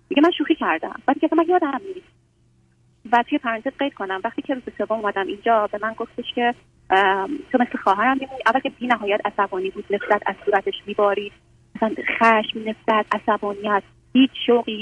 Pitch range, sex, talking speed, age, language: 205-245 Hz, female, 180 wpm, 30-49, Persian